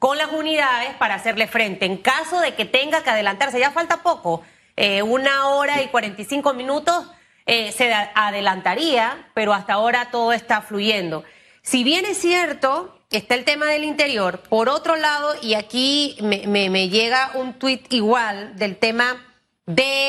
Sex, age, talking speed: female, 30-49, 165 wpm